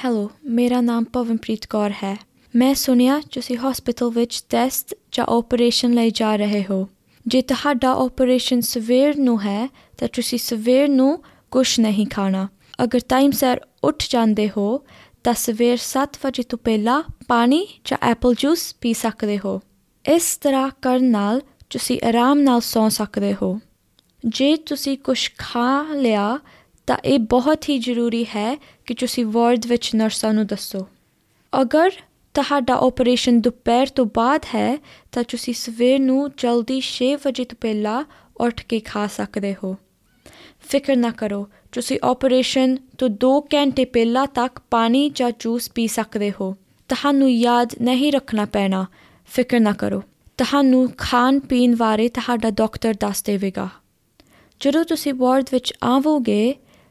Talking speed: 140 wpm